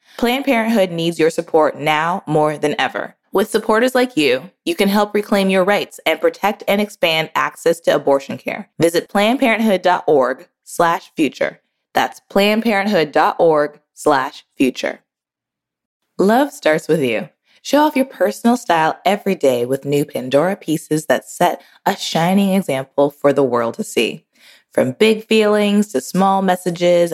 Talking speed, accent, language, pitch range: 145 wpm, American, English, 160-210 Hz